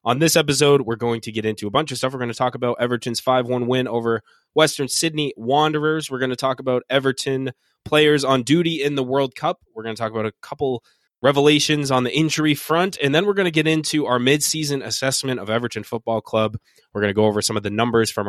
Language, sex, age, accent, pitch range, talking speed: English, male, 20-39, American, 110-135 Hz, 240 wpm